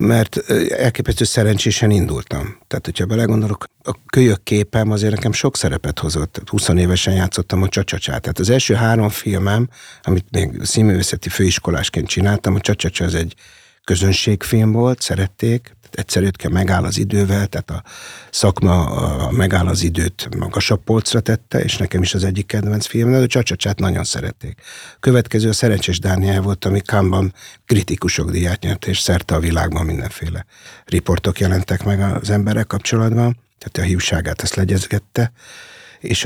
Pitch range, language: 90-110 Hz, Hungarian